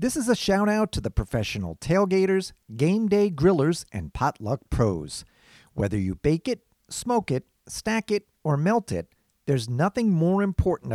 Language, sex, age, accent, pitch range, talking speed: English, male, 50-69, American, 120-200 Hz, 165 wpm